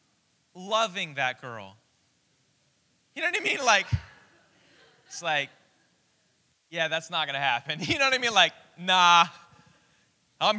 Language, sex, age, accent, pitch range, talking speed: English, male, 20-39, American, 165-240 Hz, 140 wpm